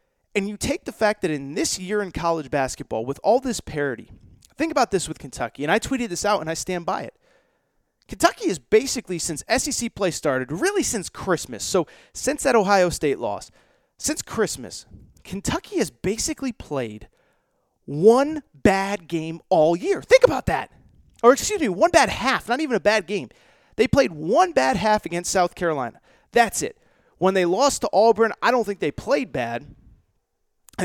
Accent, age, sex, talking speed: American, 30-49, male, 185 wpm